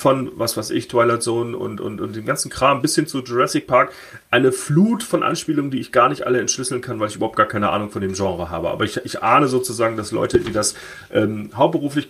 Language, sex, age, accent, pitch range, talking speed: English, male, 30-49, German, 115-165 Hz, 245 wpm